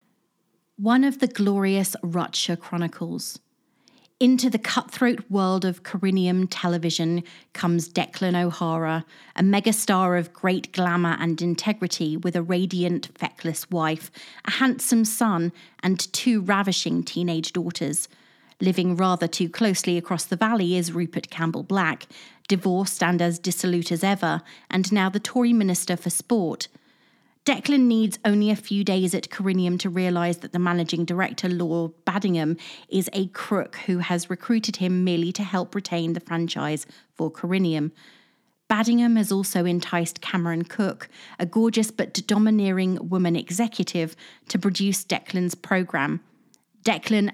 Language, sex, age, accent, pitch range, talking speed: English, female, 30-49, British, 170-200 Hz, 135 wpm